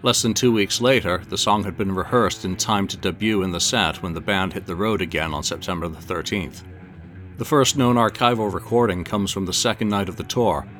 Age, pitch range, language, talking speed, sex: 60-79, 90-105 Hz, English, 230 wpm, male